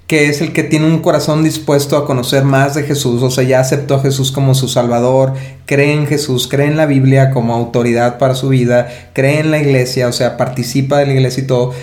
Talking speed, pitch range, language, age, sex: 235 wpm, 125-145 Hz, Spanish, 30-49, male